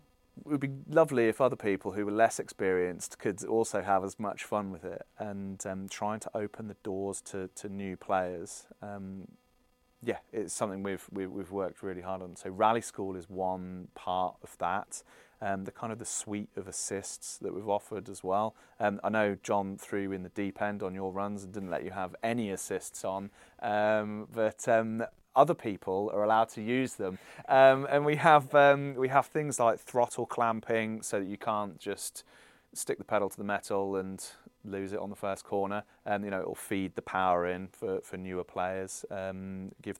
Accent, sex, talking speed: British, male, 205 wpm